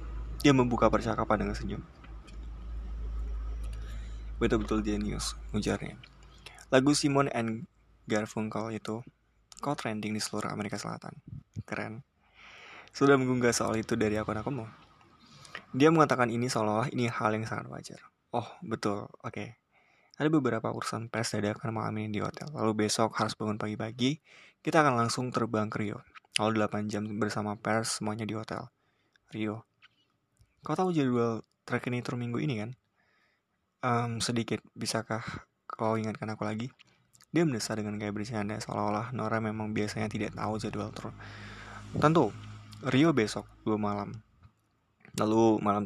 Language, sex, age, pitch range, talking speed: Indonesian, male, 20-39, 105-115 Hz, 135 wpm